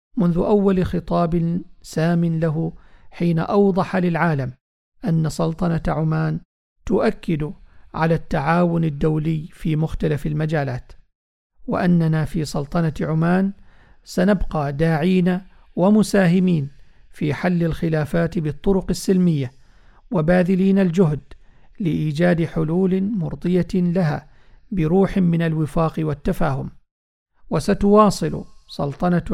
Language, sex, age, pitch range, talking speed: Arabic, male, 50-69, 155-185 Hz, 85 wpm